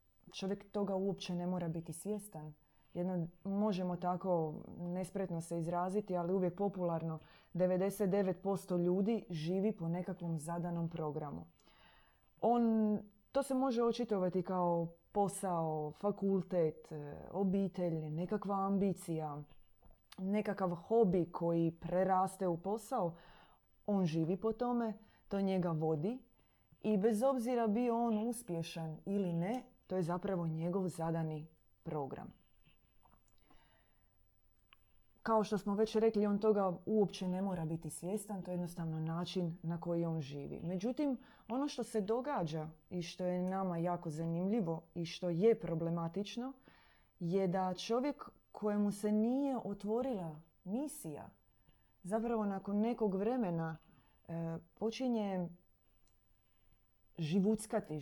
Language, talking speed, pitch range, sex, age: Croatian, 115 wpm, 165-210 Hz, female, 20-39